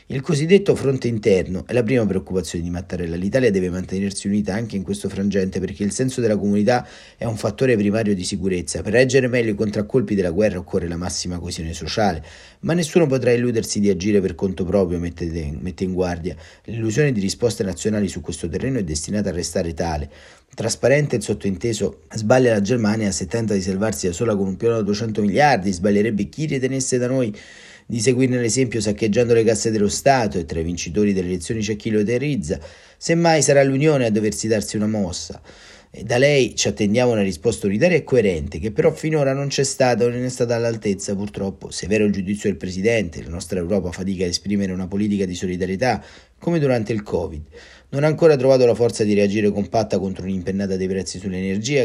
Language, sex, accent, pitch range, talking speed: Italian, male, native, 95-120 Hz, 195 wpm